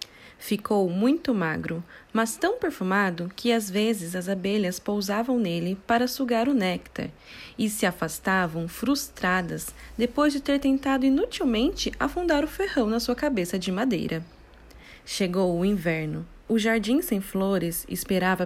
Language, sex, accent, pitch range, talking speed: Portuguese, female, Brazilian, 180-245 Hz, 135 wpm